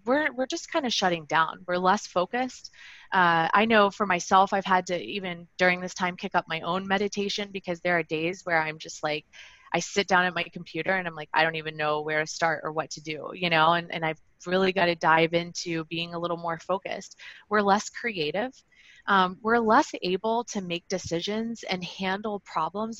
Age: 20-39